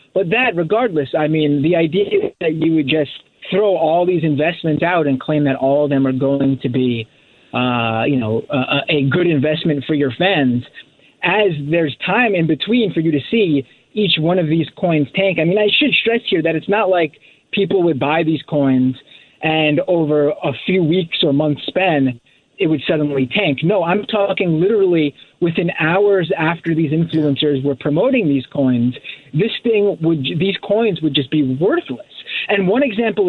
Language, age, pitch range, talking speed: English, 30-49, 145-195 Hz, 185 wpm